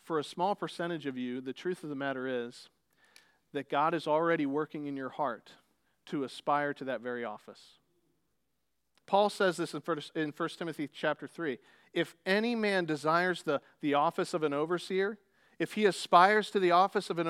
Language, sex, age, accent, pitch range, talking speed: English, male, 40-59, American, 175-240 Hz, 185 wpm